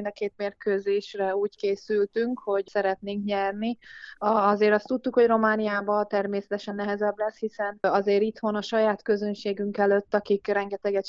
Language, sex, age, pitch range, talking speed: Hungarian, female, 20-39, 200-220 Hz, 135 wpm